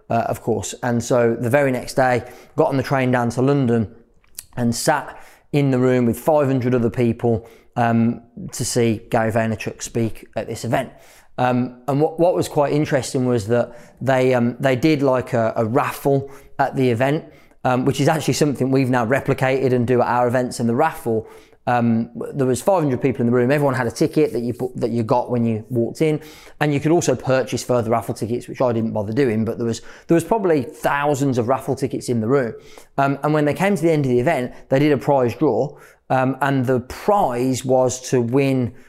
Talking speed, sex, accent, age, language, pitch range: 220 wpm, male, British, 20-39, English, 120-140 Hz